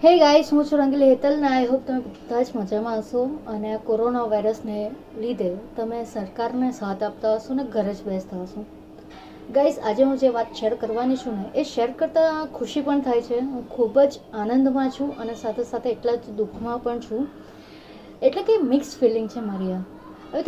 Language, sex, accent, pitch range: Gujarati, female, native, 215-265 Hz